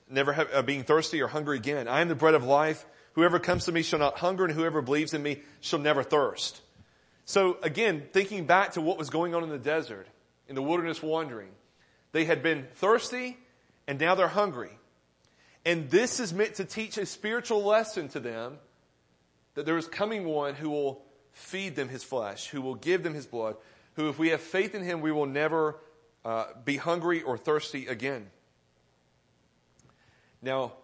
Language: English